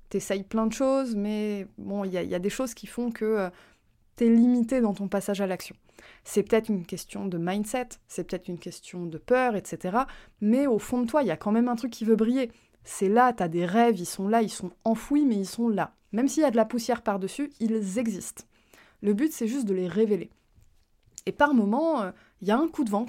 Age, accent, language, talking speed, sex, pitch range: 20-39, French, French, 245 wpm, female, 195-245 Hz